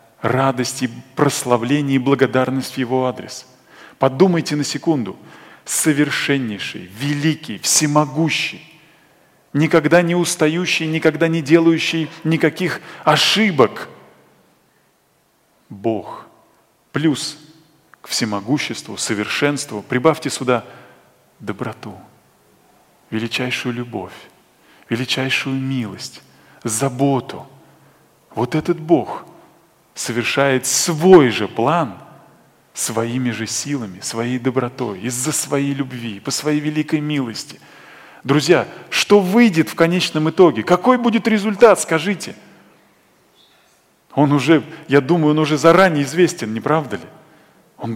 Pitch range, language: 120-160 Hz, Russian